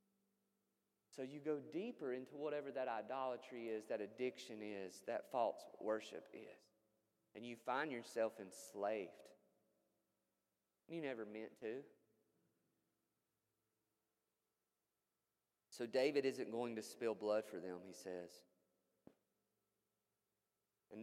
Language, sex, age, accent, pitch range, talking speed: English, male, 30-49, American, 105-130 Hz, 105 wpm